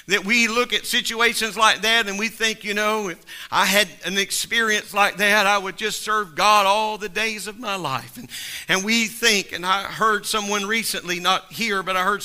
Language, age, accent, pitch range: English, 50-69, American, 195-235 Hz